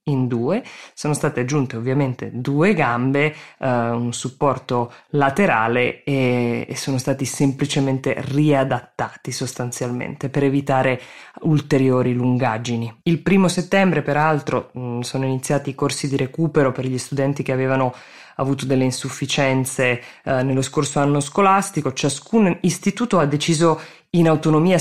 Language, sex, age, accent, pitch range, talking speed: Italian, female, 20-39, native, 130-155 Hz, 130 wpm